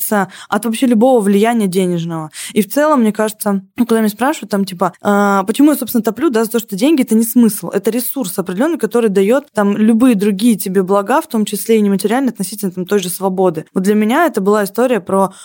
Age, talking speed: 20-39, 220 wpm